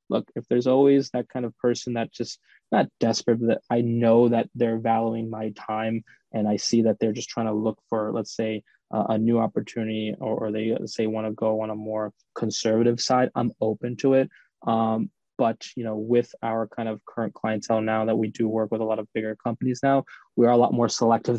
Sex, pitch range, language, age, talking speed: male, 110-125 Hz, English, 20-39, 225 wpm